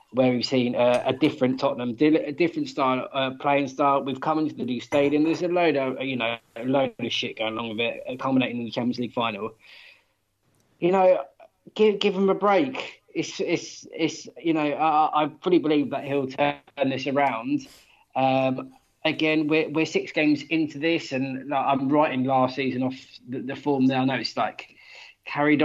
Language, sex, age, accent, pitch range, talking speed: English, male, 20-39, British, 130-160 Hz, 200 wpm